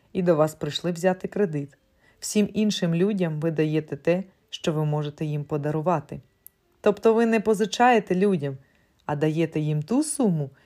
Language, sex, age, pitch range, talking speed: Ukrainian, female, 30-49, 150-205 Hz, 150 wpm